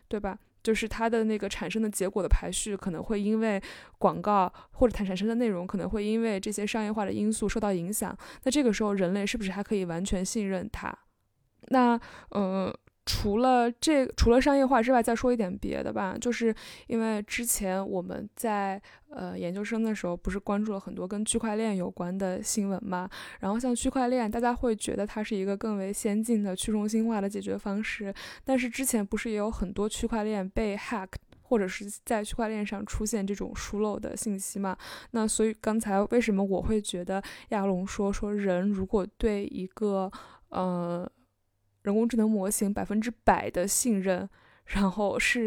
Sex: female